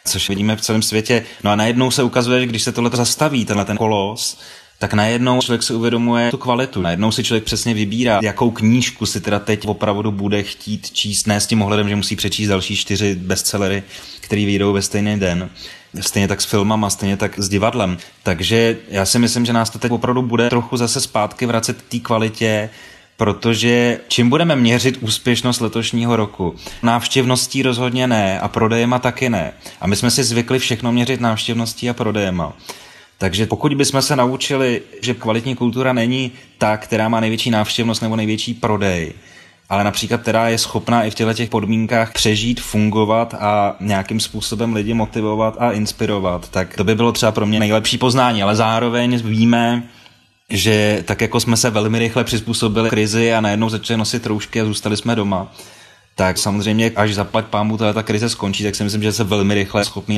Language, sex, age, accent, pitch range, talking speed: Czech, male, 20-39, native, 105-120 Hz, 185 wpm